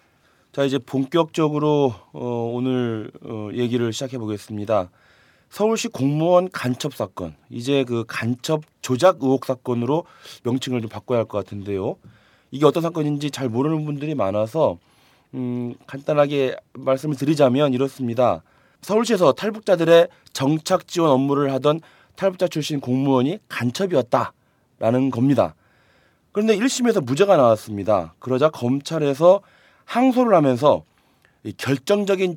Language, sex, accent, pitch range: Korean, male, native, 125-170 Hz